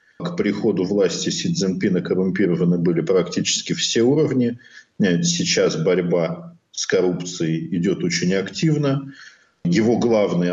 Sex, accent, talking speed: male, native, 110 wpm